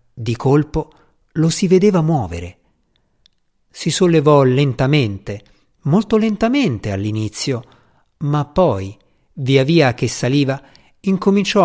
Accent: native